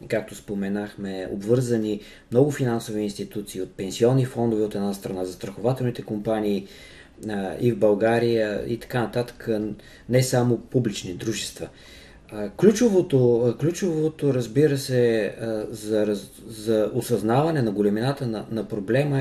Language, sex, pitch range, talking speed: Bulgarian, male, 105-125 Hz, 115 wpm